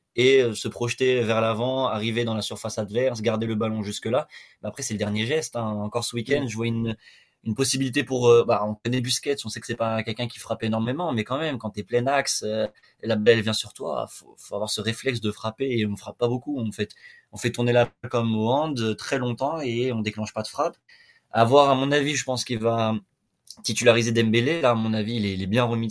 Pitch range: 110-130 Hz